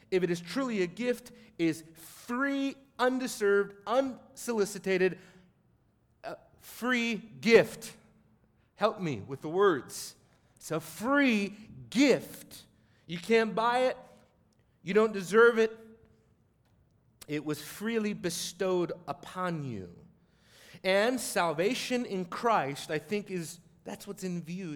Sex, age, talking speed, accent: male, 40-59, 115 wpm, American